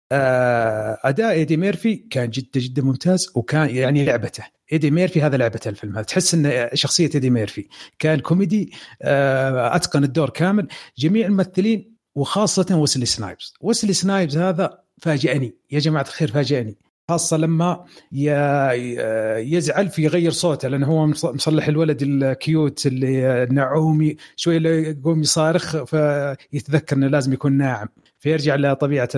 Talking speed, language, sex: 130 wpm, Arabic, male